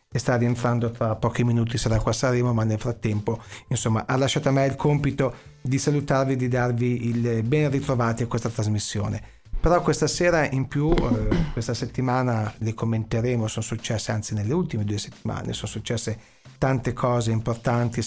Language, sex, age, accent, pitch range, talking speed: Italian, male, 40-59, native, 110-130 Hz, 175 wpm